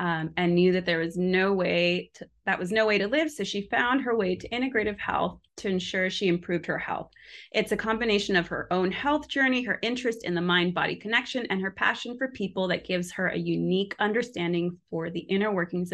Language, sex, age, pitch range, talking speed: English, female, 30-49, 175-205 Hz, 215 wpm